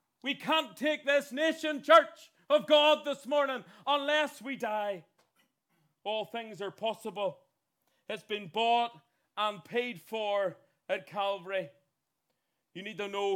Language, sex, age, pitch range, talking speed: English, male, 40-59, 175-240 Hz, 130 wpm